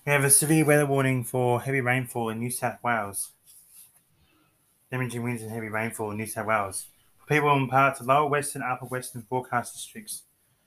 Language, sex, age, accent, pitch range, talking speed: English, male, 20-39, Australian, 120-140 Hz, 190 wpm